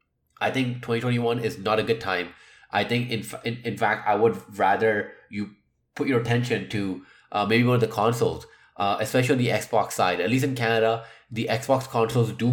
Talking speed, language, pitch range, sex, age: 200 wpm, English, 105-130 Hz, male, 20-39